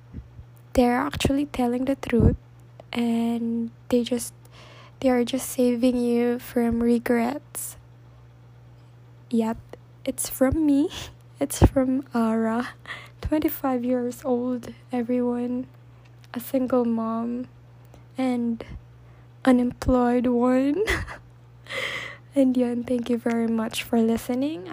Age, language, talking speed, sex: 10-29, English, 95 wpm, female